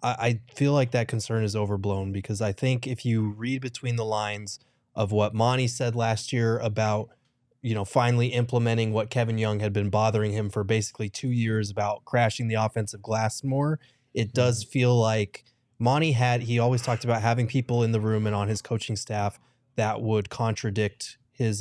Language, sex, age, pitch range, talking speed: English, male, 20-39, 110-125 Hz, 190 wpm